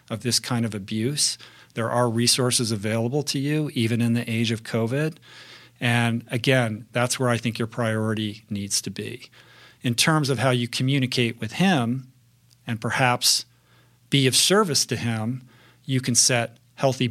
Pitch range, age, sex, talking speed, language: 115-130 Hz, 40-59, male, 165 wpm, English